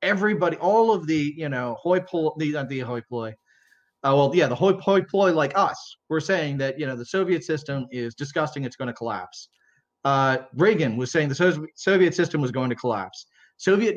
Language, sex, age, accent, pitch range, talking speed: English, male, 30-49, American, 140-185 Hz, 195 wpm